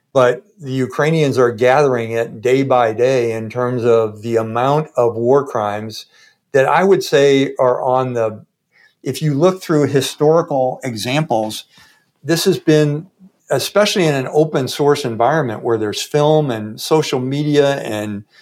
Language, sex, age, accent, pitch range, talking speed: English, male, 60-79, American, 120-155 Hz, 150 wpm